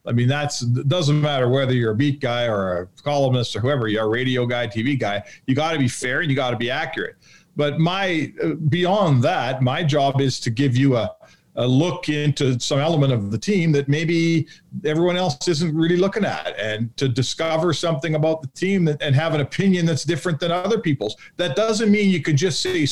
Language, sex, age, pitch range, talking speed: English, male, 40-59, 130-170 Hz, 215 wpm